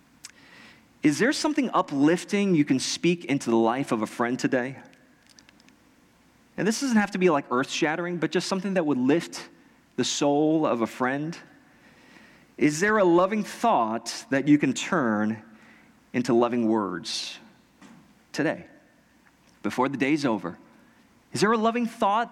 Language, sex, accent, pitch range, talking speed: English, male, American, 130-200 Hz, 150 wpm